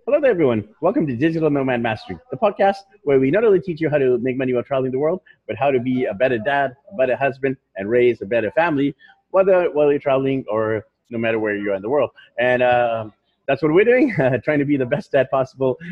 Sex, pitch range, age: male, 110-140 Hz, 30-49